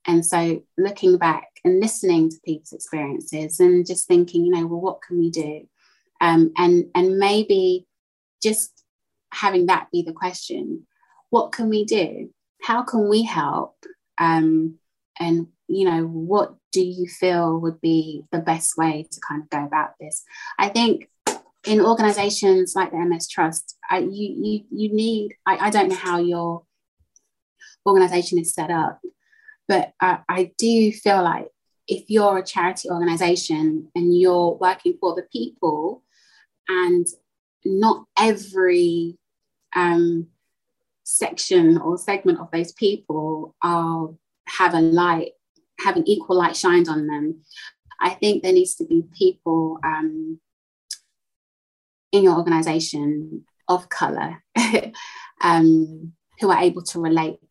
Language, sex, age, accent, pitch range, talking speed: English, female, 20-39, British, 165-200 Hz, 140 wpm